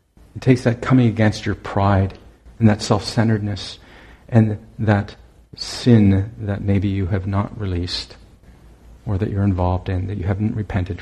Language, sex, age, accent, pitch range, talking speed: English, male, 50-69, American, 90-105 Hz, 150 wpm